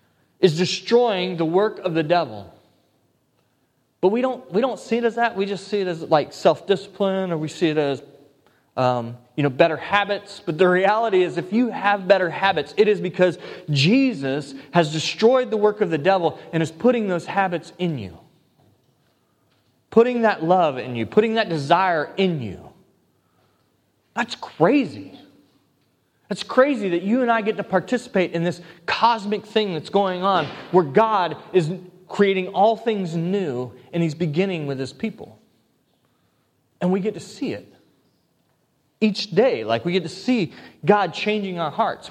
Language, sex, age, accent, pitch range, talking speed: English, male, 30-49, American, 160-210 Hz, 170 wpm